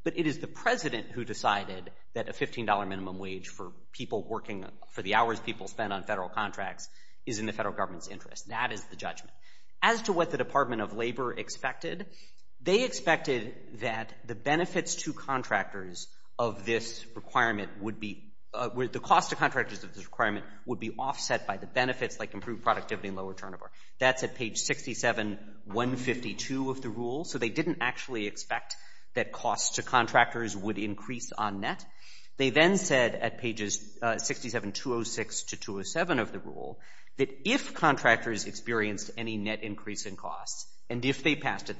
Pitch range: 105-130 Hz